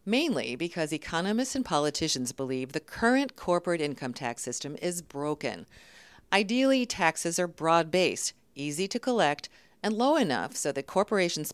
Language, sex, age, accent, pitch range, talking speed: English, female, 50-69, American, 140-195 Hz, 140 wpm